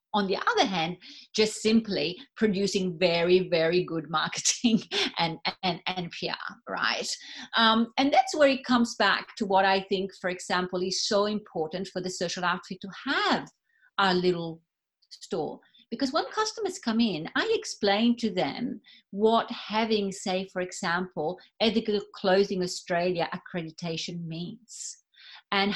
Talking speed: 140 wpm